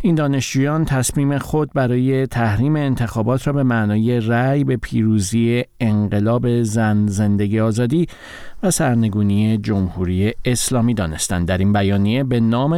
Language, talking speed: Persian, 125 wpm